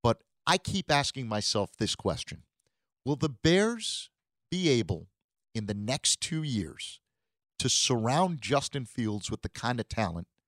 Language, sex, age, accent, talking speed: English, male, 50-69, American, 145 wpm